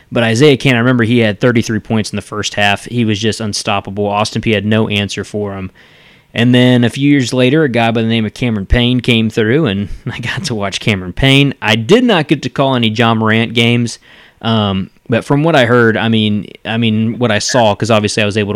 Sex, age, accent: male, 20-39, American